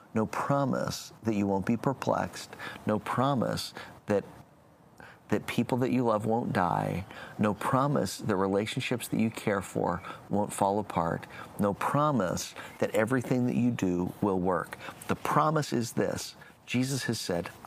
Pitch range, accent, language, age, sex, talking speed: 90-120 Hz, American, English, 40-59, male, 150 wpm